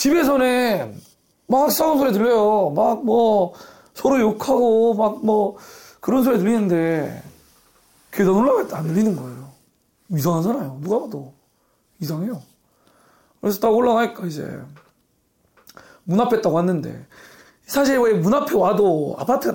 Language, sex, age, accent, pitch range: Korean, male, 40-59, native, 180-245 Hz